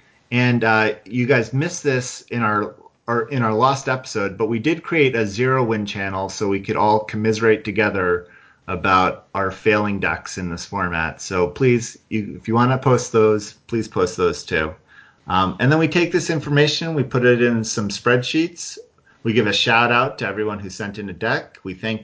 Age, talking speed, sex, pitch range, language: 40-59, 200 wpm, male, 105-135 Hz, English